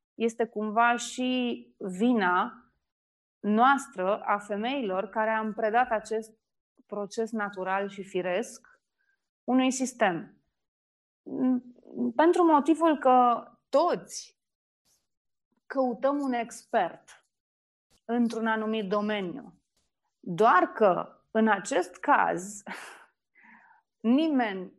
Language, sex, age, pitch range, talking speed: Romanian, female, 30-49, 200-250 Hz, 80 wpm